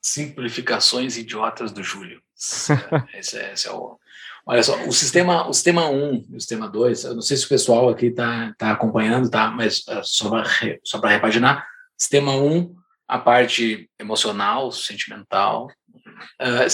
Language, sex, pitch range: Portuguese, male, 120-145 Hz